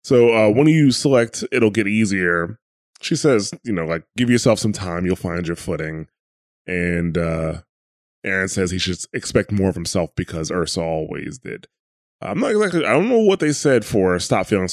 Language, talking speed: English, 190 wpm